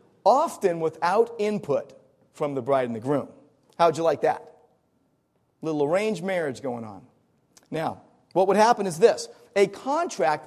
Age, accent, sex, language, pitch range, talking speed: 40-59, American, male, English, 145-195 Hz, 160 wpm